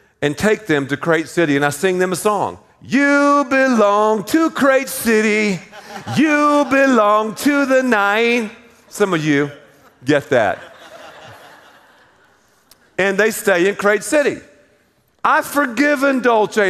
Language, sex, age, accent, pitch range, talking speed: English, male, 50-69, American, 195-270 Hz, 130 wpm